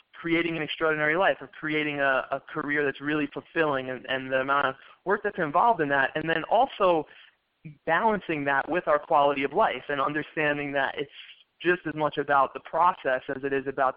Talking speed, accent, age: 200 wpm, American, 20-39